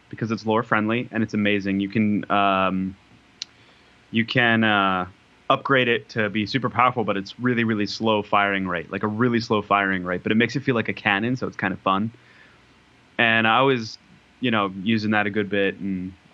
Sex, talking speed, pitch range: male, 205 wpm, 105-125 Hz